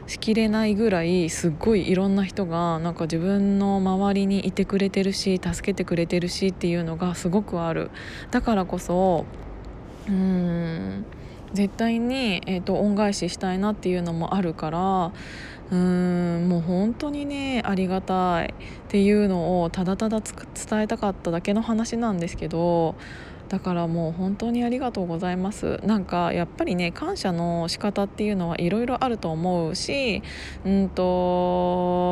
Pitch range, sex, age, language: 175-210 Hz, female, 20-39, Japanese